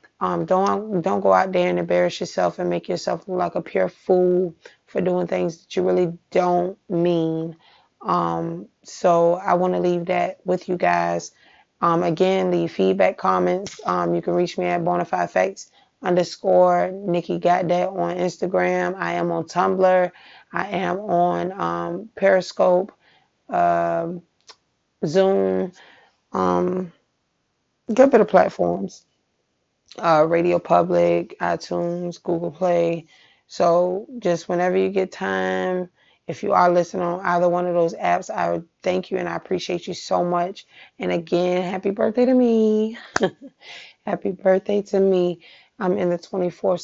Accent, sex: American, female